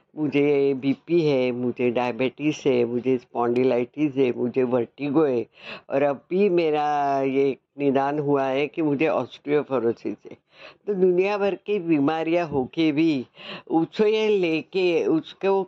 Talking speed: 130 wpm